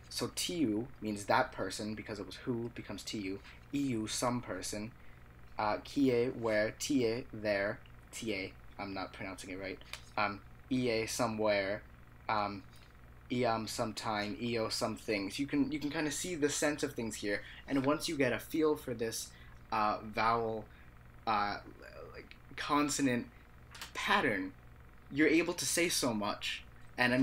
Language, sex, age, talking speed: English, male, 20-39, 150 wpm